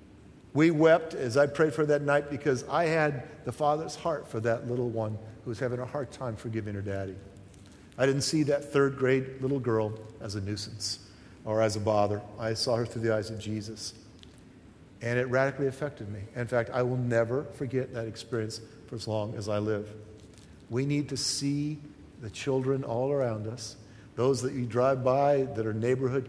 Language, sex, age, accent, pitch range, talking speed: English, male, 50-69, American, 115-155 Hz, 195 wpm